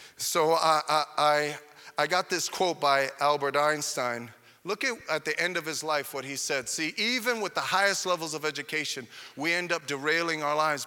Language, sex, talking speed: English, male, 200 wpm